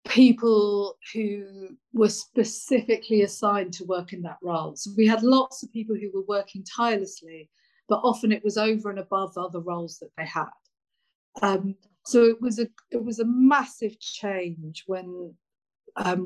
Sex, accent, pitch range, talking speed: female, British, 180-230 Hz, 160 wpm